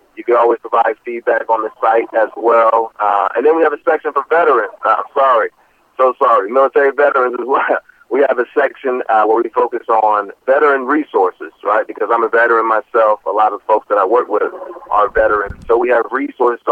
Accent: American